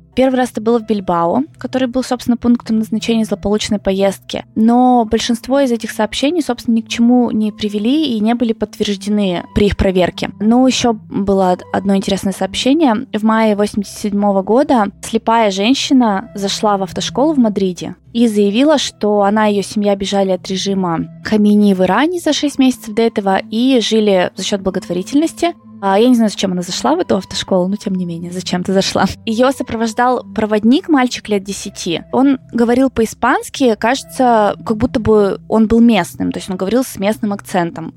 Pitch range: 195-245 Hz